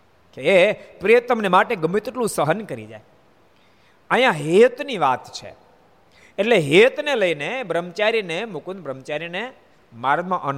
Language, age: Gujarati, 50-69